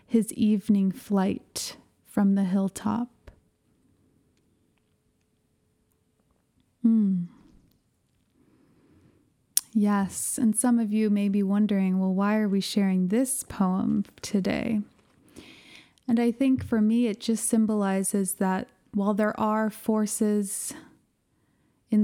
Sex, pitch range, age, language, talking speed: female, 195-220 Hz, 20-39, English, 100 wpm